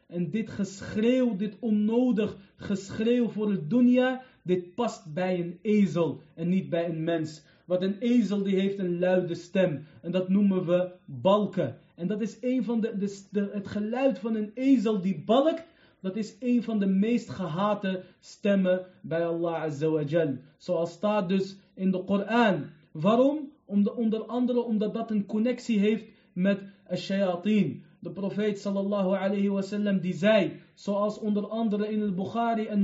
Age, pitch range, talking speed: 30-49, 180-215 Hz, 160 wpm